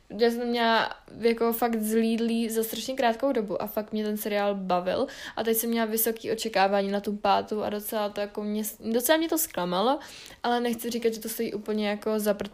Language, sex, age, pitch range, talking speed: Czech, female, 20-39, 205-235 Hz, 205 wpm